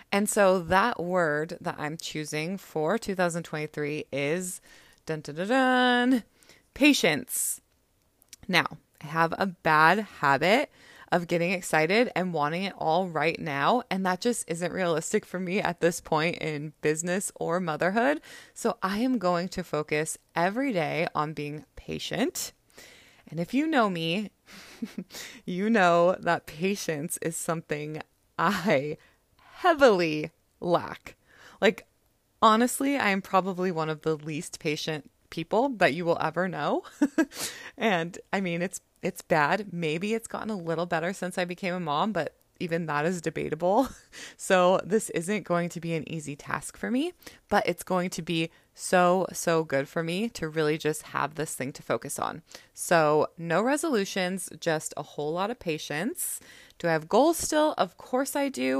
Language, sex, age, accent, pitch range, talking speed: English, female, 20-39, American, 160-210 Hz, 160 wpm